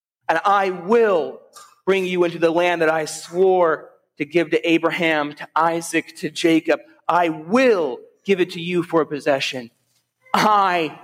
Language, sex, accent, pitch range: English, male, American, 165-235 Hz